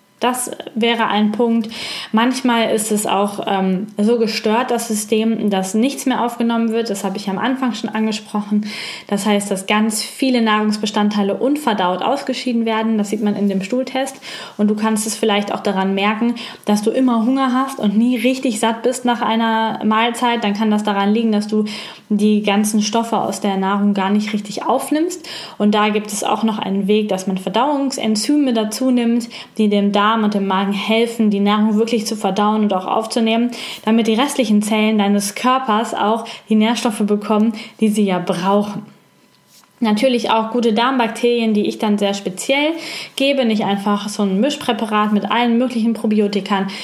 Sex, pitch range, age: female, 205-240 Hz, 10-29